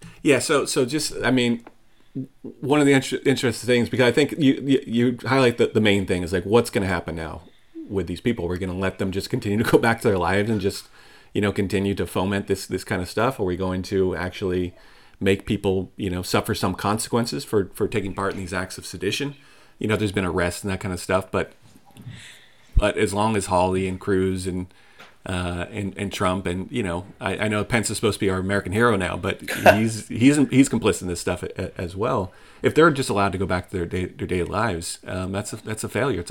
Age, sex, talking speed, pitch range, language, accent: 40-59, male, 245 wpm, 90-115 Hz, English, American